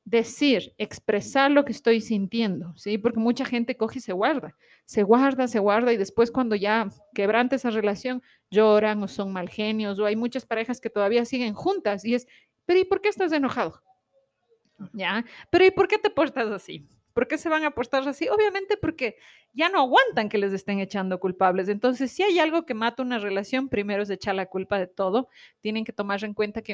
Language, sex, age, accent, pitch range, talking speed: Spanish, female, 30-49, Mexican, 205-265 Hz, 205 wpm